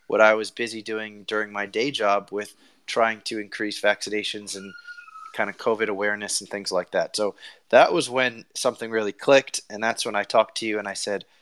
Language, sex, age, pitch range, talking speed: English, male, 20-39, 105-120 Hz, 210 wpm